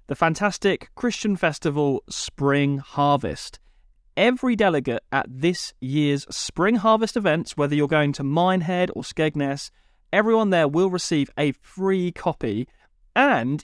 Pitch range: 140-200 Hz